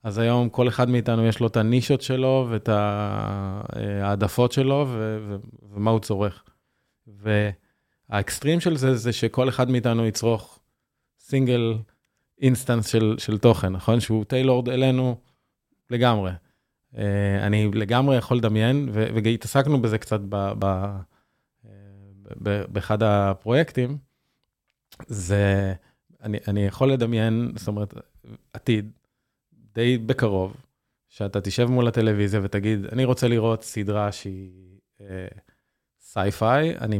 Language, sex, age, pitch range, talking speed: Hebrew, male, 20-39, 100-120 Hz, 115 wpm